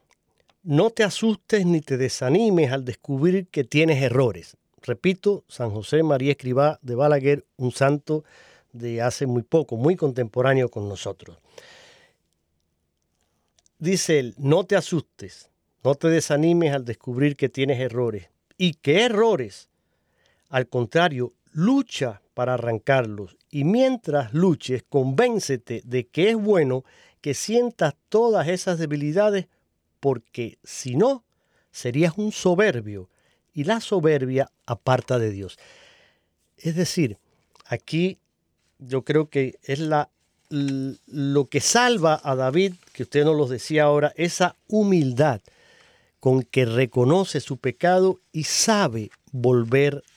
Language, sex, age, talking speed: Spanish, male, 40-59, 120 wpm